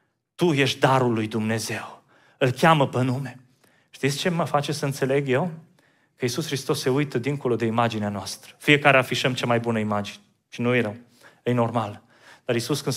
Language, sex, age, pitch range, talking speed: Romanian, male, 30-49, 130-200 Hz, 185 wpm